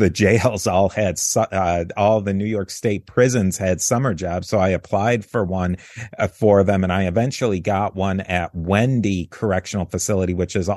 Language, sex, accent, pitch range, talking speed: English, male, American, 95-115 Hz, 180 wpm